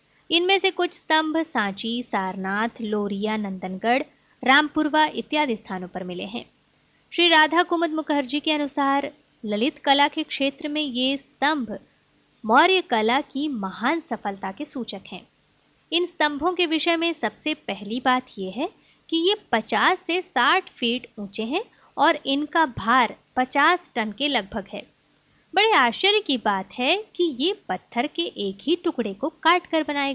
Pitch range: 220-320 Hz